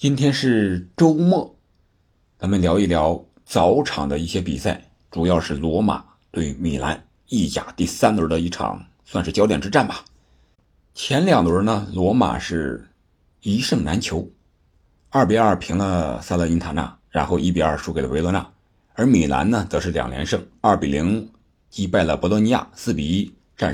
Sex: male